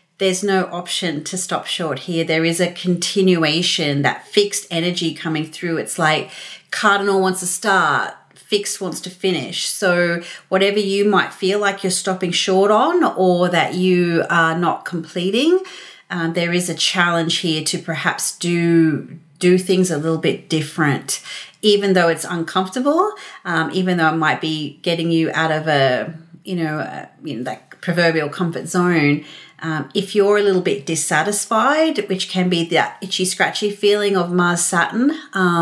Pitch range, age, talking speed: 160-190 Hz, 40-59, 160 wpm